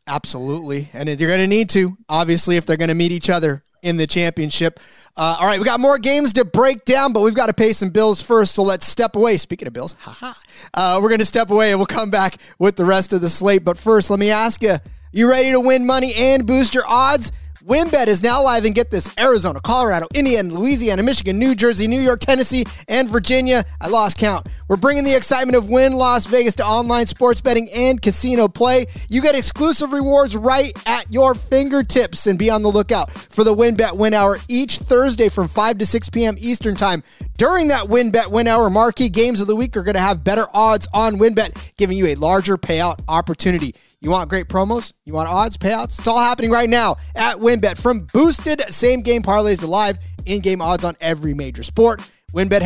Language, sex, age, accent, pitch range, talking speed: English, male, 30-49, American, 190-250 Hz, 220 wpm